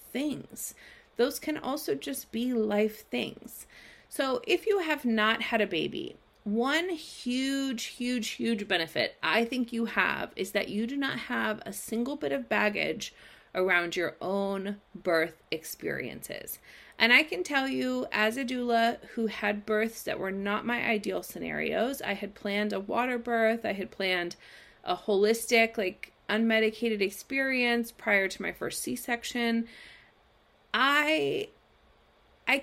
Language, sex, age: English, female, 30-49